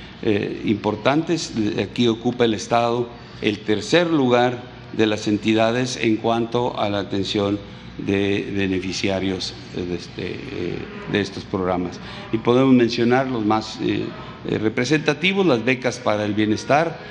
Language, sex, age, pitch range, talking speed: Spanish, male, 50-69, 105-130 Hz, 125 wpm